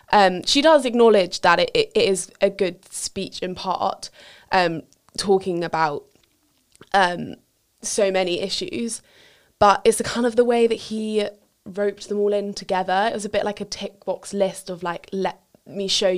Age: 20-39